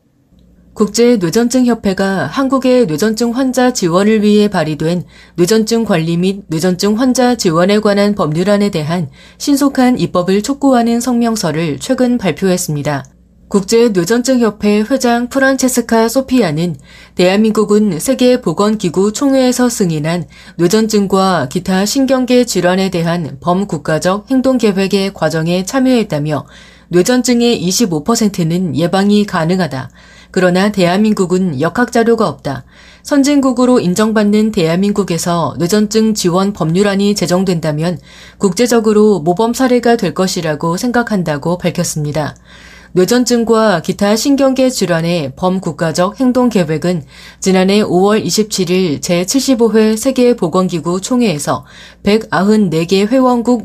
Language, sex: Korean, female